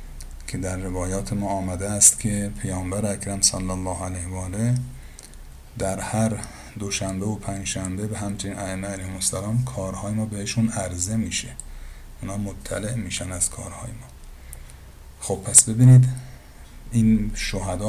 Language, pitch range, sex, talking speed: Persian, 95-110 Hz, male, 125 wpm